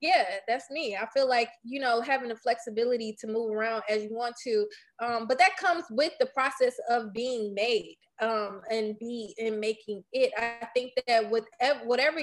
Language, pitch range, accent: English, 215-255 Hz, American